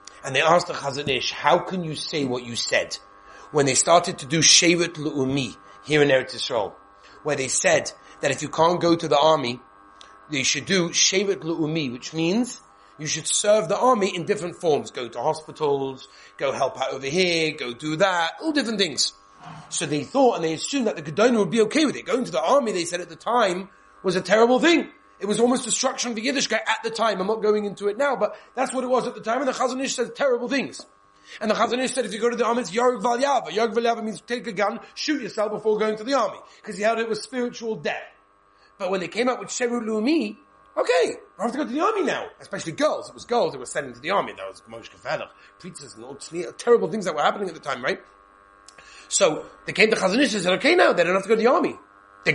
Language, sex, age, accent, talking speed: English, male, 30-49, British, 245 wpm